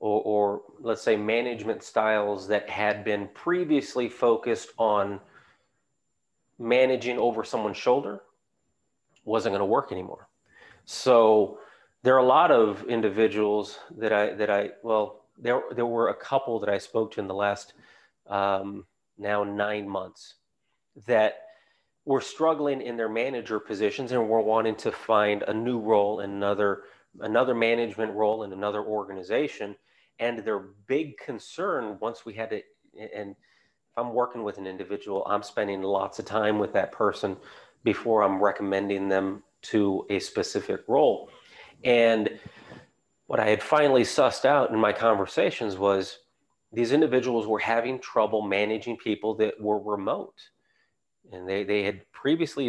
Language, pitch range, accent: English, 100-115 Hz, American